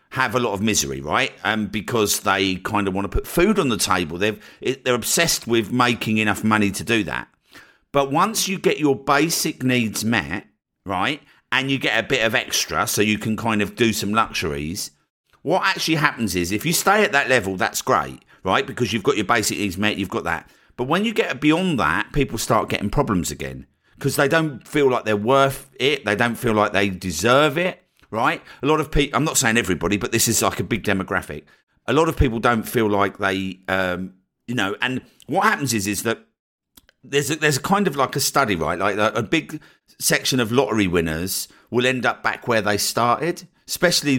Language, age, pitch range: English, 50-69, 100-135 Hz